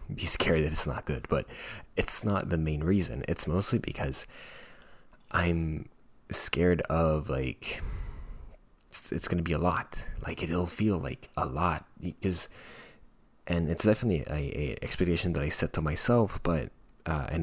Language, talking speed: English, 160 wpm